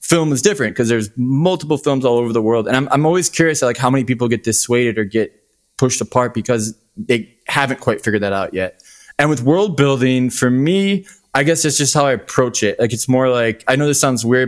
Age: 20-39